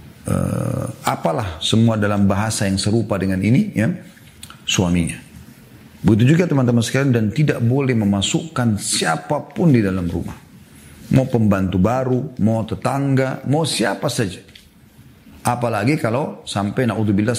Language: Indonesian